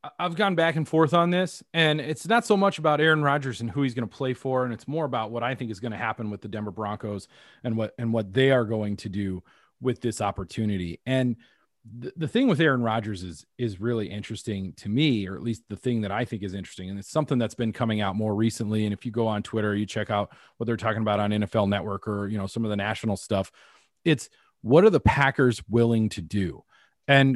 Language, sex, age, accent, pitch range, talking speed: English, male, 30-49, American, 105-150 Hz, 250 wpm